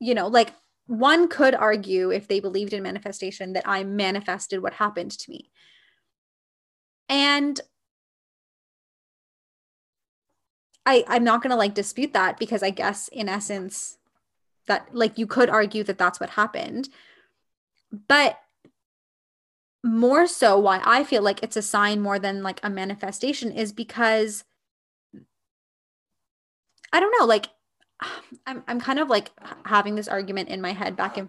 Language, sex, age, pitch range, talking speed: English, female, 20-39, 200-240 Hz, 145 wpm